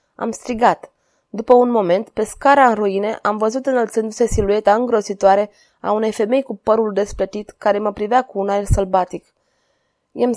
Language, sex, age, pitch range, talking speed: Romanian, female, 20-39, 195-245 Hz, 160 wpm